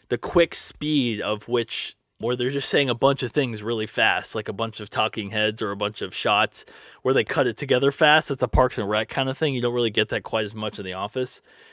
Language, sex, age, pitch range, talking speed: English, male, 20-39, 110-155 Hz, 260 wpm